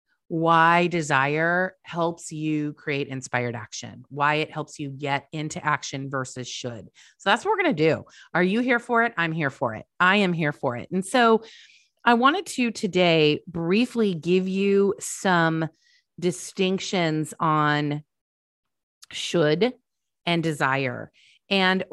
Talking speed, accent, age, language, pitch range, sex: 145 wpm, American, 30-49, English, 150-210 Hz, female